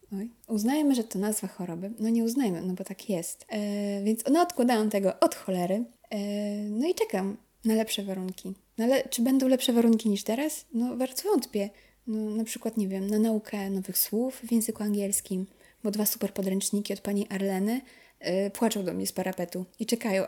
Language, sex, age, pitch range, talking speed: Polish, female, 20-39, 195-235 Hz, 195 wpm